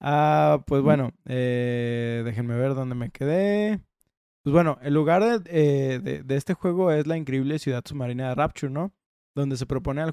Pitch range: 135-155 Hz